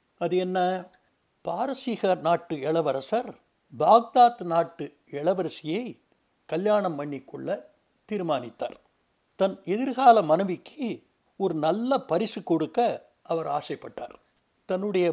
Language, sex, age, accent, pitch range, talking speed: Tamil, male, 60-79, native, 170-230 Hz, 85 wpm